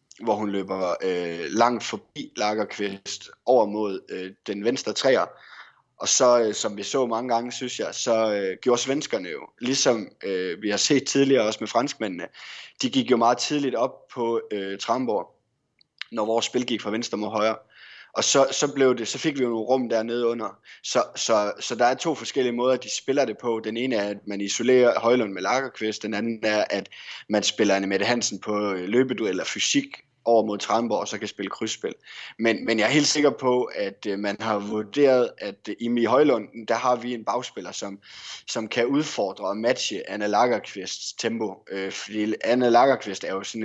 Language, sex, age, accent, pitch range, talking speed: Danish, male, 20-39, native, 105-125 Hz, 200 wpm